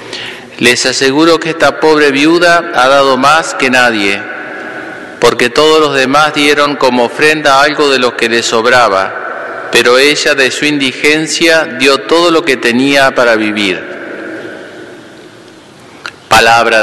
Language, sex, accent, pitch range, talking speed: Spanish, male, Argentinian, 110-135 Hz, 130 wpm